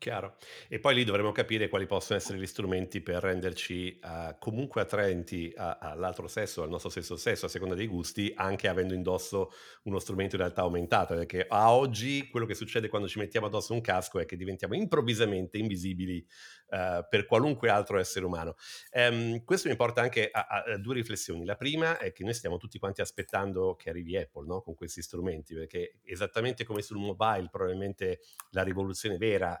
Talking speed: 185 wpm